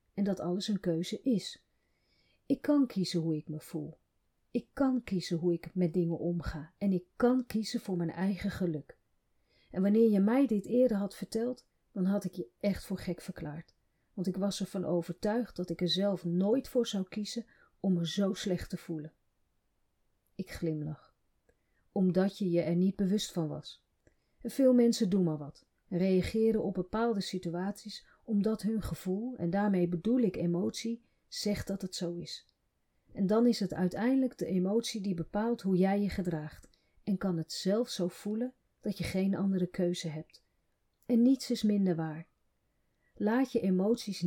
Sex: female